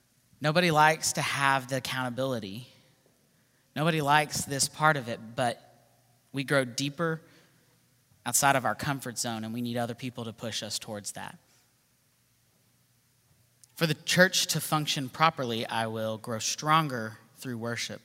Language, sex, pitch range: English, male, 125-150 Hz